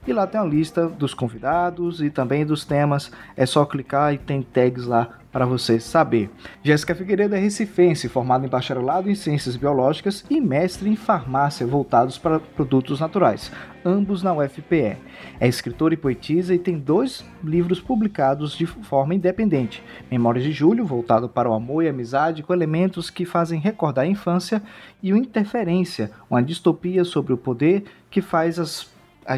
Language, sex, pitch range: Portuguese, male, 125-175 Hz